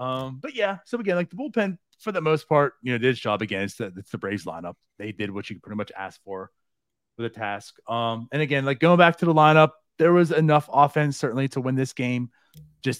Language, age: English, 30-49